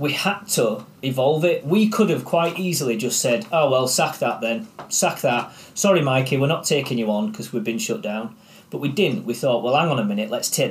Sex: male